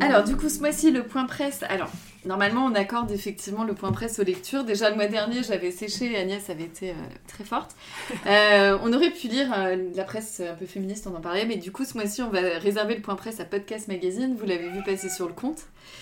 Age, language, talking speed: 30-49, French, 245 wpm